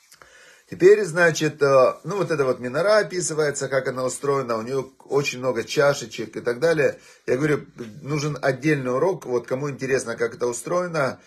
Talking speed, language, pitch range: 160 wpm, Russian, 130-160 Hz